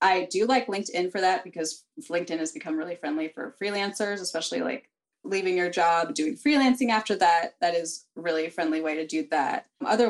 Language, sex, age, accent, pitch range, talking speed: English, female, 20-39, American, 180-240 Hz, 195 wpm